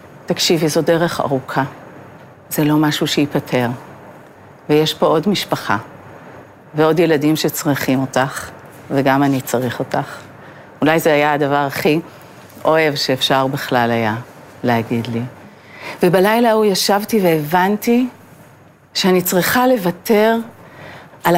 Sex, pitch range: female, 150-200 Hz